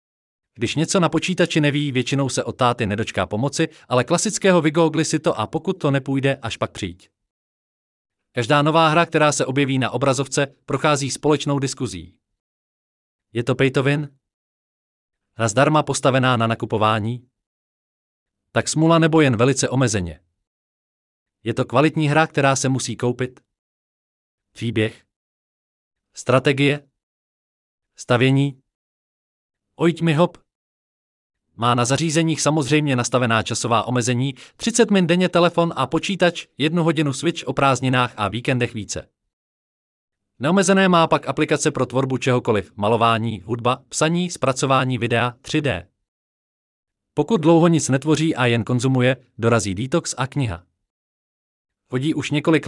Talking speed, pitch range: 125 wpm, 115-155 Hz